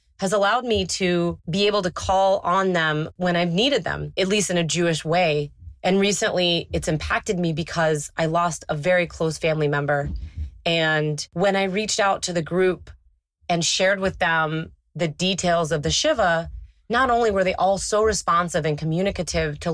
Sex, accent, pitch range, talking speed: female, American, 155-190 Hz, 180 wpm